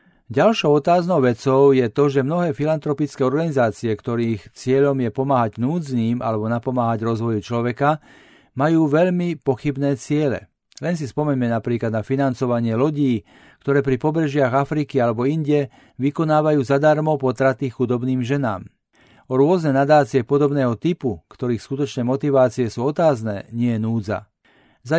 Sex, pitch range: male, 120-150 Hz